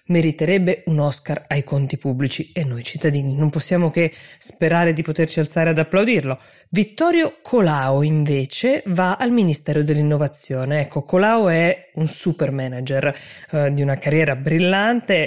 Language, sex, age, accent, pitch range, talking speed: Italian, female, 20-39, native, 145-180 Hz, 140 wpm